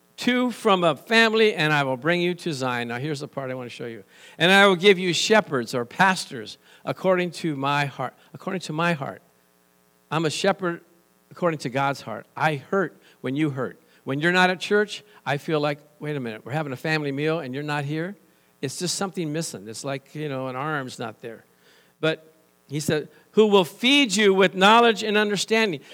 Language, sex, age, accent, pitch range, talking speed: English, male, 50-69, American, 140-195 Hz, 210 wpm